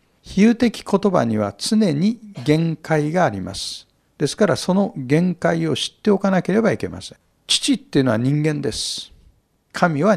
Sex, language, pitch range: male, Japanese, 130-195 Hz